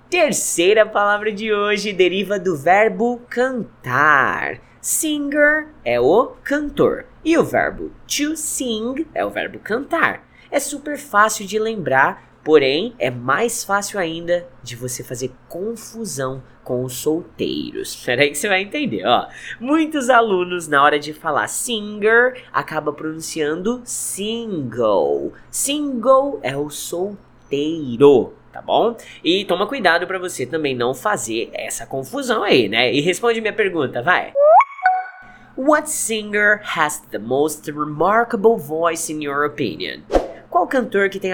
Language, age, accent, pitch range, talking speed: English, 20-39, Brazilian, 150-245 Hz, 130 wpm